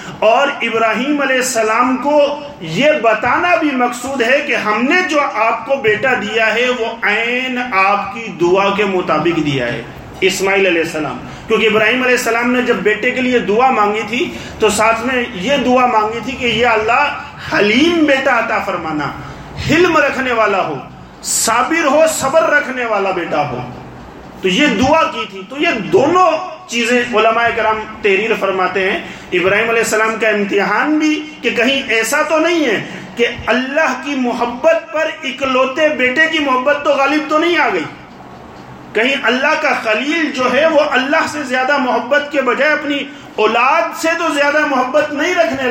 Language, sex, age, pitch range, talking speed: English, male, 40-59, 215-290 Hz, 140 wpm